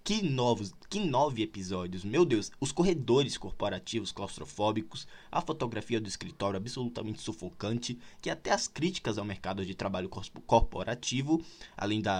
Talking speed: 130 wpm